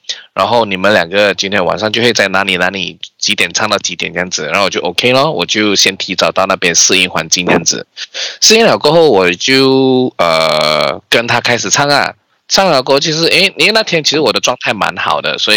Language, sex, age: Chinese, male, 20-39